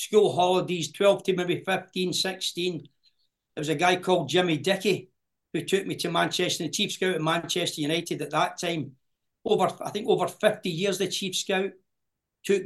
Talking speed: 180 wpm